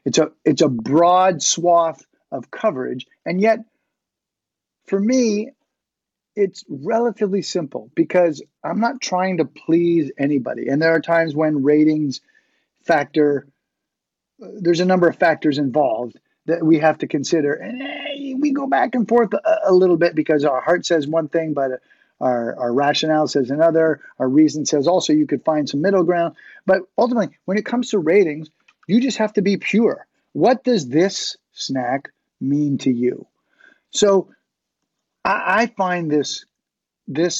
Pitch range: 145-195 Hz